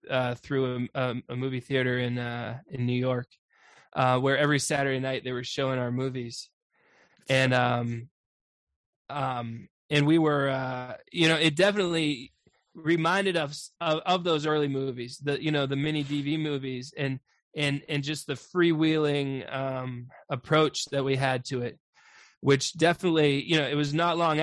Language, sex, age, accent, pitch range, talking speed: English, male, 20-39, American, 135-165 Hz, 165 wpm